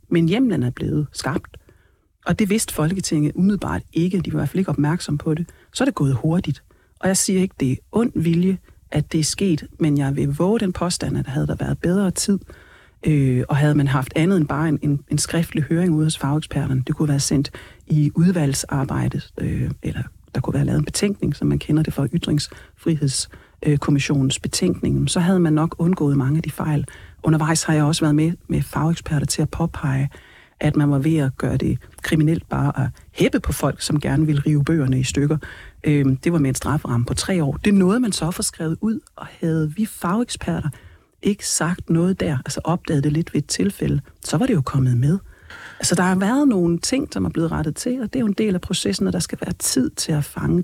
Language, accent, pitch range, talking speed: Danish, native, 140-175 Hz, 225 wpm